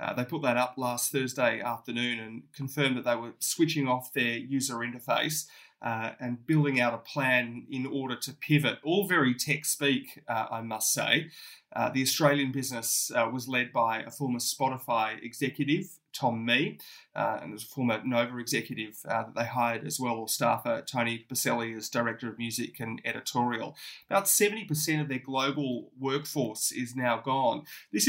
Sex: male